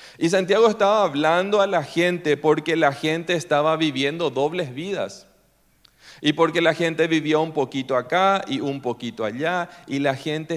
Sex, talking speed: male, 165 wpm